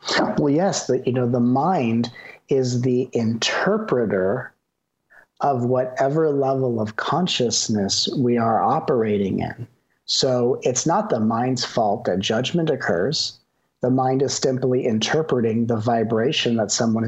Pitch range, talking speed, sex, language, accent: 115-135 Hz, 125 wpm, male, English, American